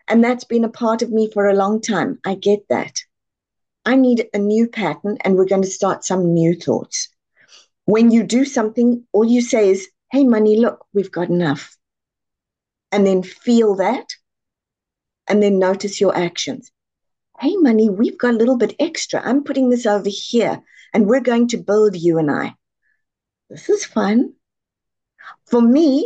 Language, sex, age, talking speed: English, female, 50-69, 175 wpm